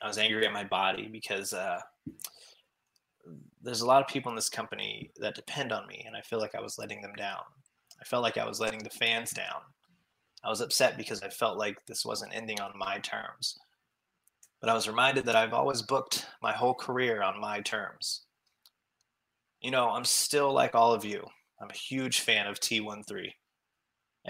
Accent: American